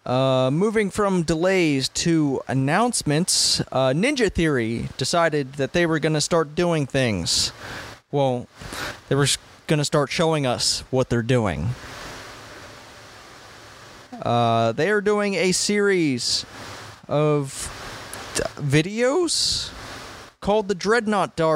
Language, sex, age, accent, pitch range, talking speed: English, male, 30-49, American, 130-175 Hz, 110 wpm